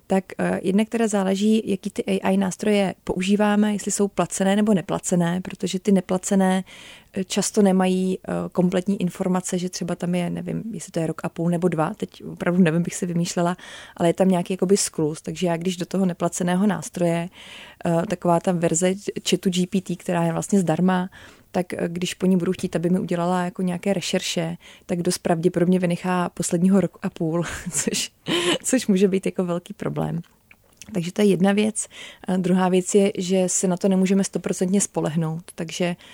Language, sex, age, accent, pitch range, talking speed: Czech, female, 30-49, native, 175-195 Hz, 175 wpm